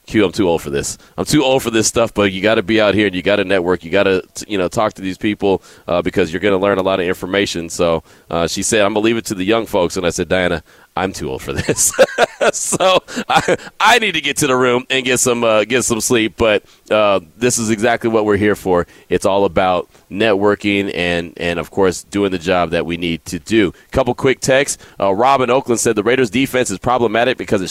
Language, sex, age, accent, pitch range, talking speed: English, male, 30-49, American, 95-120 Hz, 260 wpm